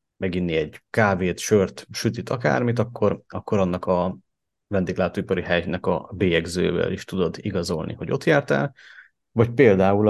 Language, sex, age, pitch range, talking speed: Hungarian, male, 30-49, 90-105 Hz, 130 wpm